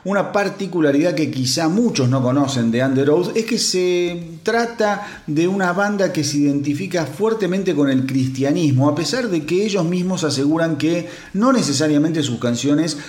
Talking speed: 165 wpm